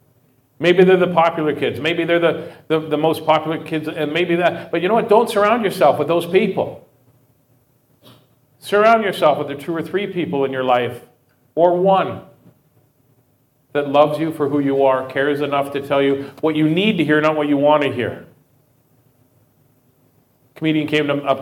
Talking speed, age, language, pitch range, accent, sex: 190 wpm, 40-59, English, 130-155 Hz, American, male